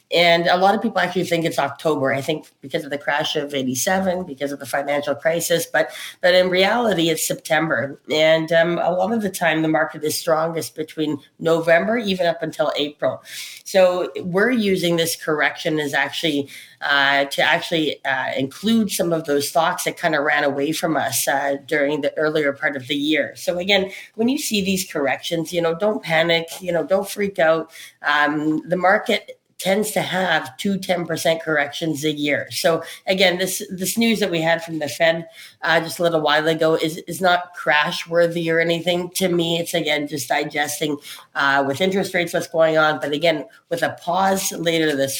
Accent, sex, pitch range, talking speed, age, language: American, female, 150-180 Hz, 195 wpm, 30-49, English